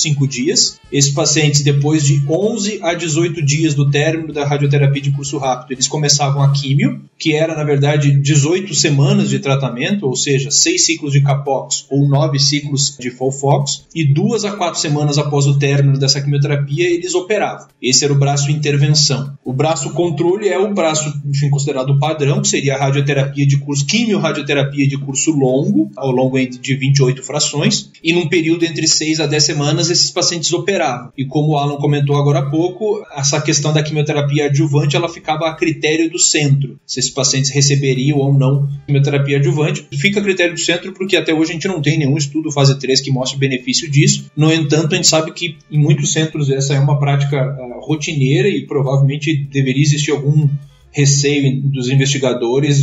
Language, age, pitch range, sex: Portuguese, 20-39, 140-155 Hz, male